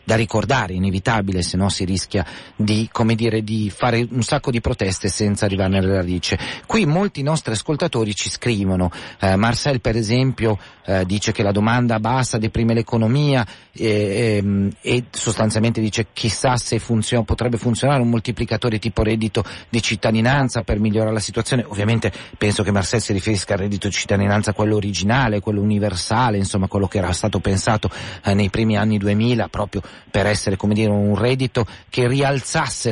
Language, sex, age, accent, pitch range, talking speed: Italian, male, 40-59, native, 105-120 Hz, 170 wpm